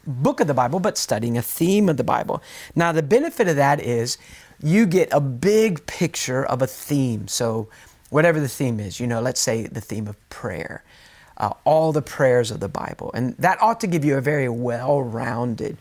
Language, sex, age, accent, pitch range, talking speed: English, male, 40-59, American, 125-165 Hz, 205 wpm